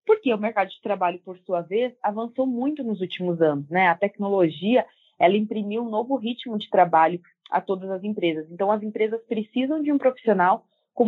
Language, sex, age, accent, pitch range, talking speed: Portuguese, female, 20-39, Brazilian, 190-250 Hz, 185 wpm